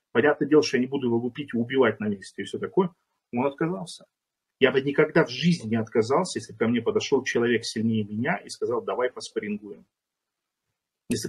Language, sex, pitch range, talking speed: Russian, male, 115-155 Hz, 190 wpm